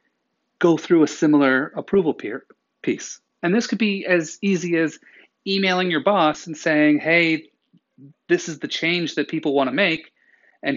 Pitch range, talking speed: 135-170 Hz, 165 wpm